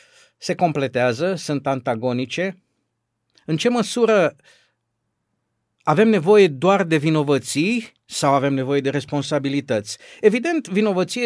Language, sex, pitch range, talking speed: Romanian, male, 130-195 Hz, 100 wpm